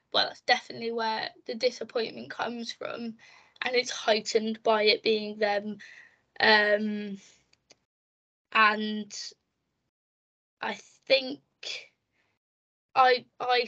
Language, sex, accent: English, female, British